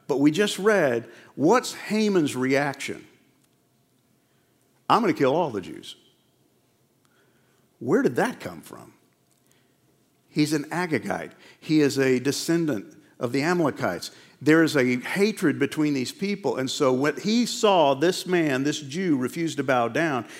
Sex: male